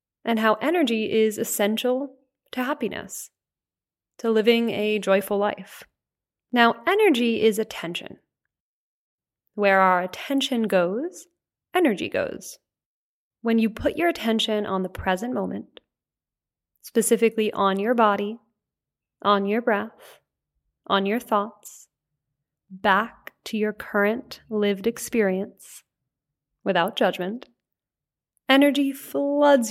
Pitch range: 195-245 Hz